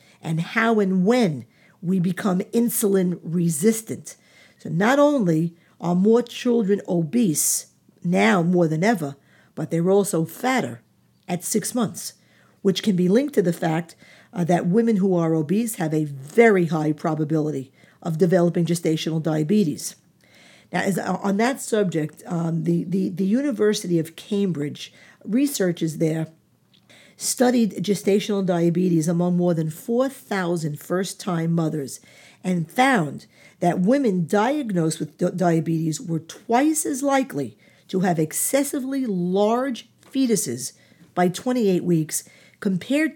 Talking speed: 130 wpm